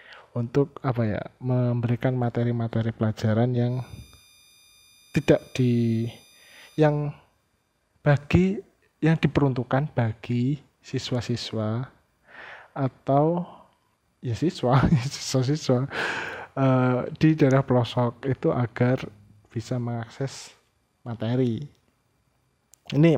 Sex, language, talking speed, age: male, Indonesian, 75 wpm, 20-39